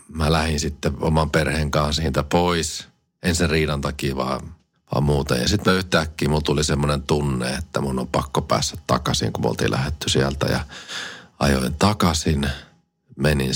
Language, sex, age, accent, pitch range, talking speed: Finnish, male, 40-59, native, 70-80 Hz, 160 wpm